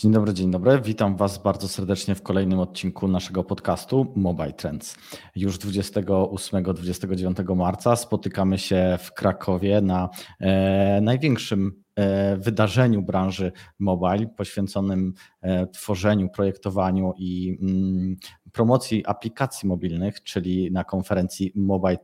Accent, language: native, Polish